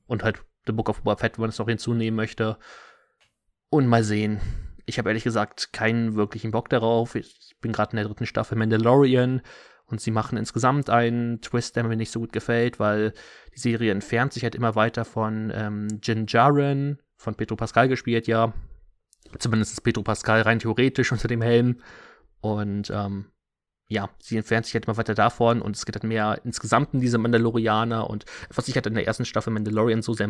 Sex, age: male, 20-39